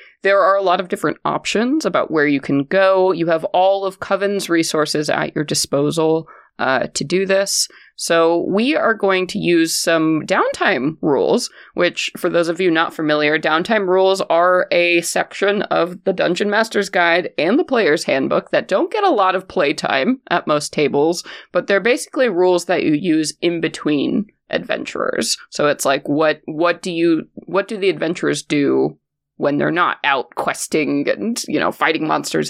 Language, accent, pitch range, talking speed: English, American, 165-225 Hz, 180 wpm